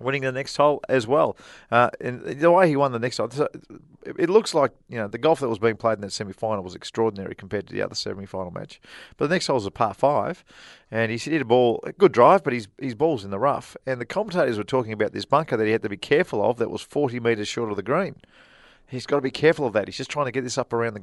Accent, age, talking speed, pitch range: Australian, 40-59, 290 wpm, 110-135 Hz